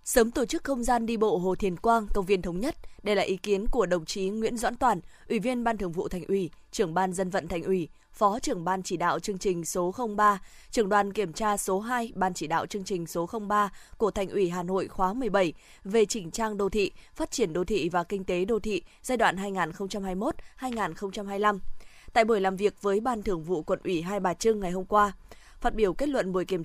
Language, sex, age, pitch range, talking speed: Vietnamese, female, 20-39, 185-225 Hz, 250 wpm